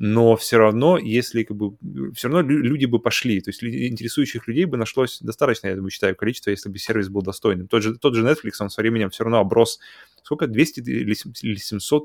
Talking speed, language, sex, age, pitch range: 210 wpm, Russian, male, 20-39, 105-130 Hz